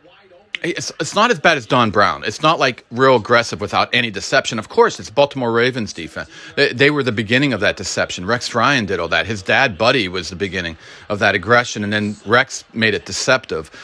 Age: 40-59